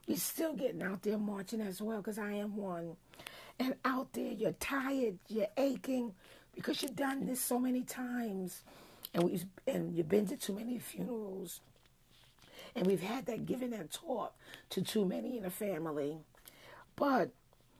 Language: English